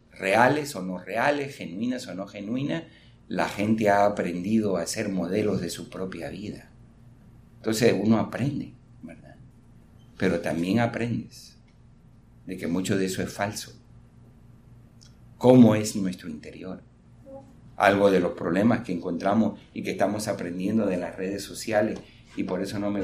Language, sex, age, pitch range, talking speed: Spanish, male, 50-69, 95-120 Hz, 145 wpm